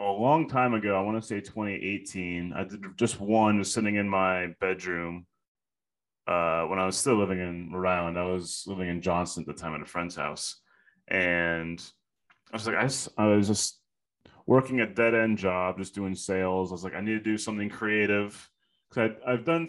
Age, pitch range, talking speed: 30-49, 95-110 Hz, 205 wpm